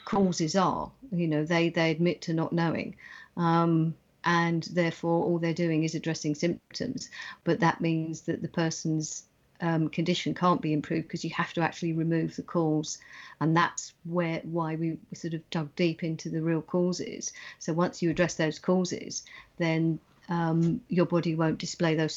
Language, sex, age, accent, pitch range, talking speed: English, female, 50-69, British, 160-170 Hz, 175 wpm